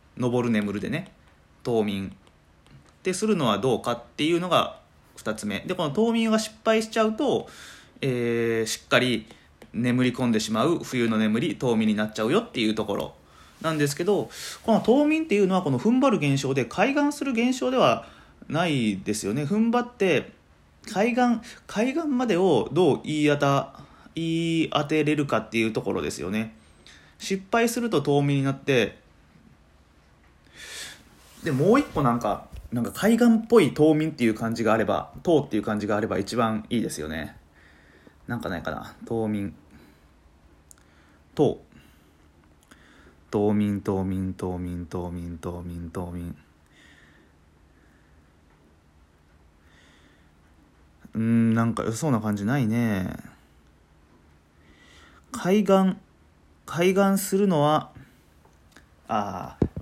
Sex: male